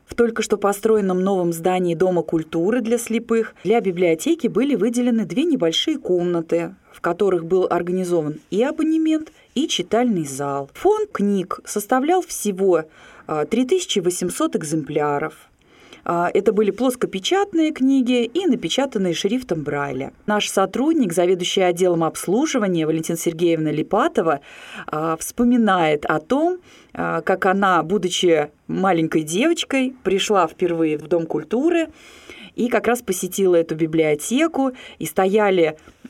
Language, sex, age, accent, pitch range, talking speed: Russian, female, 20-39, native, 165-235 Hz, 115 wpm